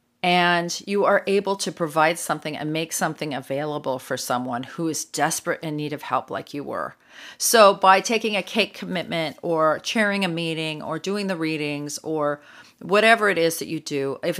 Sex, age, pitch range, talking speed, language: female, 40-59, 145-195 Hz, 190 wpm, English